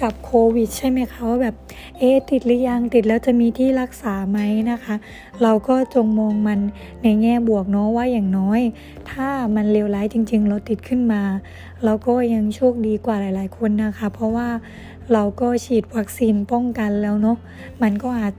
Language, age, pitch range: Thai, 20-39, 215-255 Hz